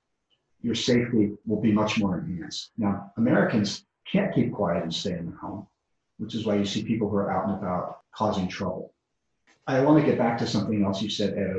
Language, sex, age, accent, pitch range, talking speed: German, male, 40-59, American, 100-120 Hz, 210 wpm